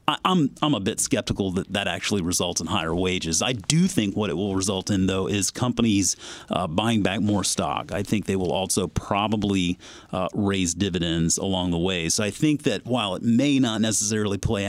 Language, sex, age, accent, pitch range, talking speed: English, male, 30-49, American, 95-120 Hz, 190 wpm